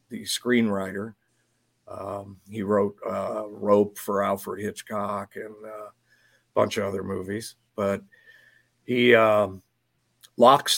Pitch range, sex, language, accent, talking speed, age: 105-115 Hz, male, English, American, 115 wpm, 50-69